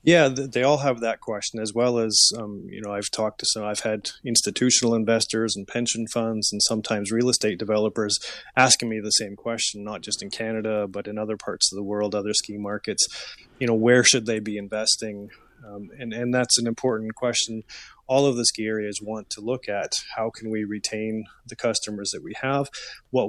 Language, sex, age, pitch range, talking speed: English, male, 20-39, 110-130 Hz, 205 wpm